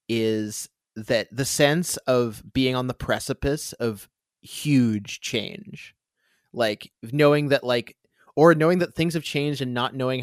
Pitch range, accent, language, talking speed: 110-130 Hz, American, English, 145 wpm